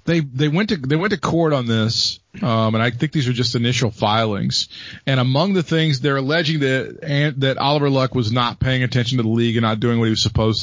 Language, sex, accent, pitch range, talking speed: English, male, American, 120-145 Hz, 250 wpm